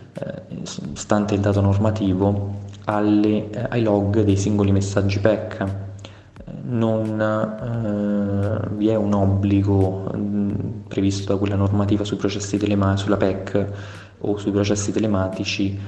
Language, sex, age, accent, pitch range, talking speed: Italian, male, 20-39, native, 95-105 Hz, 125 wpm